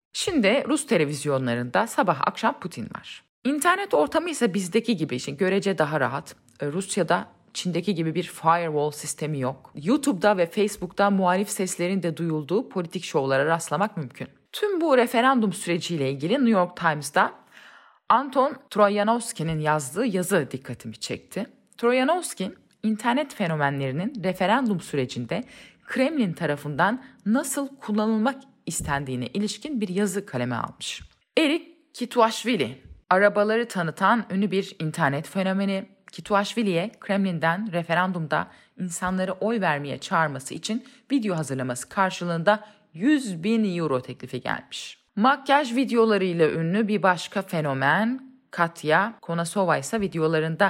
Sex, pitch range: female, 160-225 Hz